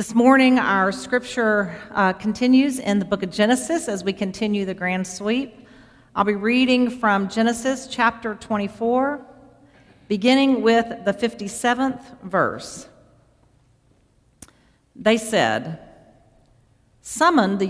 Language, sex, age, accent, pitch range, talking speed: English, female, 50-69, American, 155-230 Hz, 110 wpm